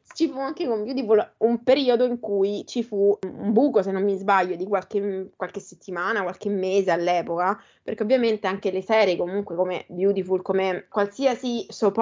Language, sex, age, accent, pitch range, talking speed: Italian, female, 20-39, native, 190-240 Hz, 175 wpm